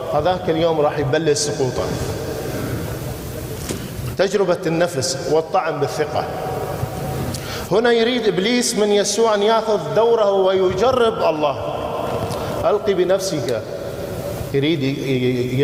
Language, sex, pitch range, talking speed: English, male, 135-185 Hz, 85 wpm